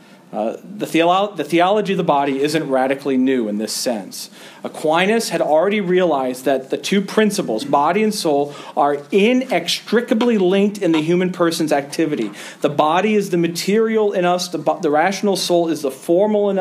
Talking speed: 170 wpm